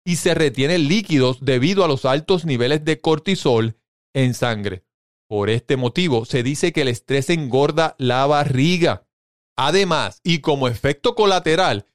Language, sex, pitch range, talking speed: Spanish, male, 125-170 Hz, 145 wpm